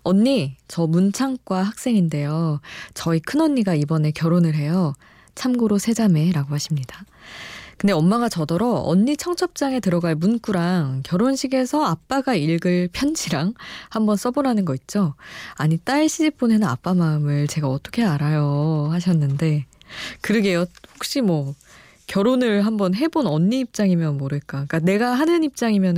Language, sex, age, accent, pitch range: Korean, female, 20-39, native, 160-230 Hz